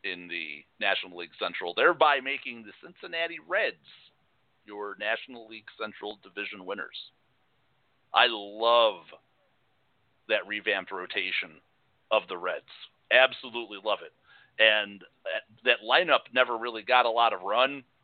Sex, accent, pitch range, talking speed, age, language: male, American, 105-125 Hz, 125 wpm, 50-69, English